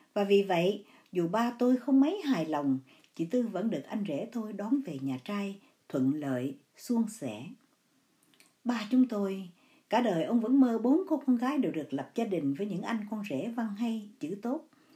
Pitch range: 175-275 Hz